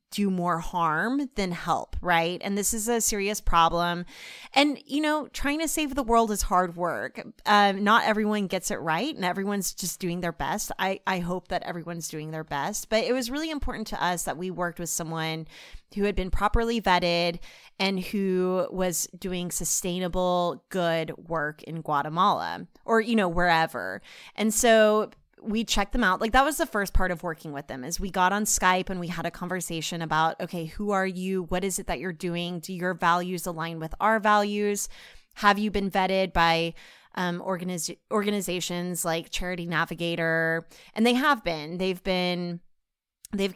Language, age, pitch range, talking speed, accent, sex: English, 20-39, 165-205 Hz, 185 wpm, American, female